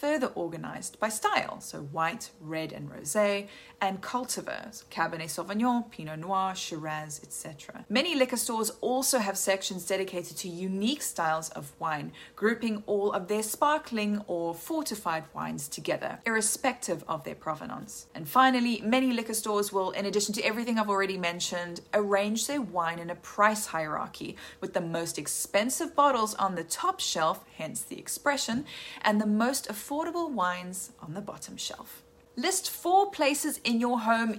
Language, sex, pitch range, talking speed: English, female, 180-250 Hz, 155 wpm